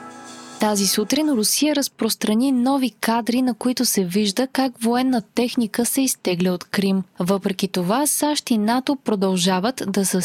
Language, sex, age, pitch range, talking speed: Bulgarian, female, 20-39, 190-245 Hz, 145 wpm